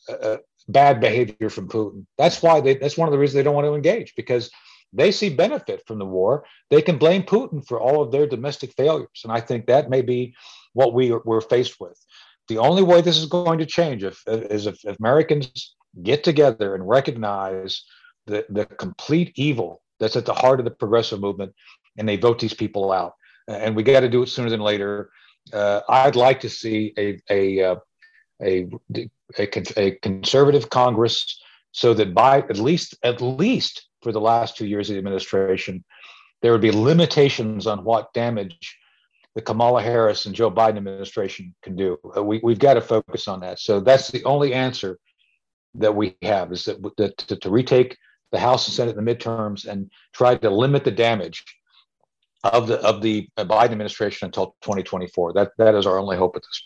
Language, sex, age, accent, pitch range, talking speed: English, male, 50-69, American, 105-135 Hz, 195 wpm